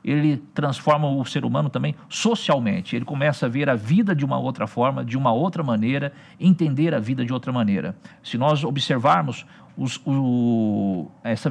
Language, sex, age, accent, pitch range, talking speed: Portuguese, male, 50-69, Brazilian, 130-180 Hz, 160 wpm